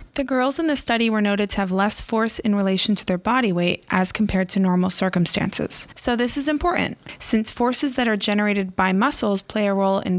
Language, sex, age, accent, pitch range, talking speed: English, female, 20-39, American, 190-220 Hz, 220 wpm